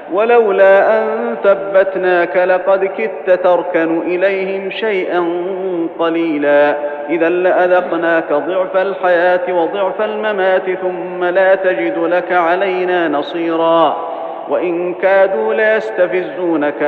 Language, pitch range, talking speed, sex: Arabic, 165-185 Hz, 85 wpm, male